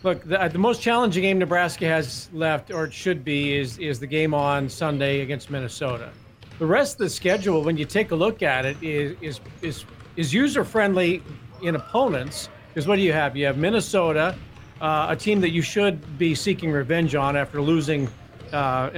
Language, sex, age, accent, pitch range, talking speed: English, male, 50-69, American, 145-180 Hz, 195 wpm